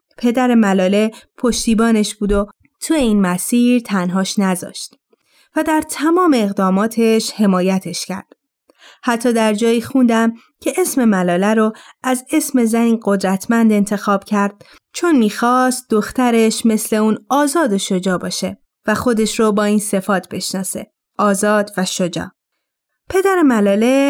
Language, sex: Persian, female